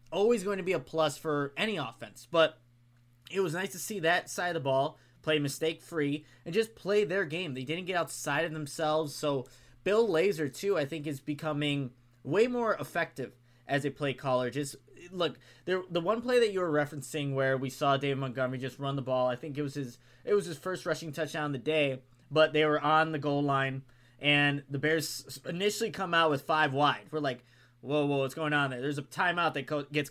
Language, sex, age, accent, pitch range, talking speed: English, male, 20-39, American, 135-170 Hz, 220 wpm